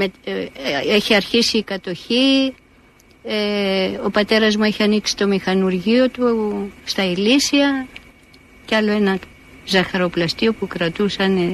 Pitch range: 185-240 Hz